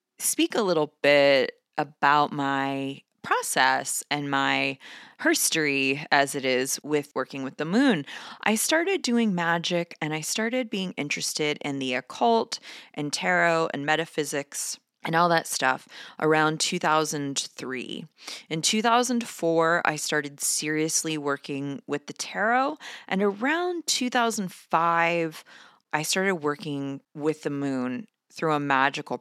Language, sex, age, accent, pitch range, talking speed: English, female, 20-39, American, 135-170 Hz, 125 wpm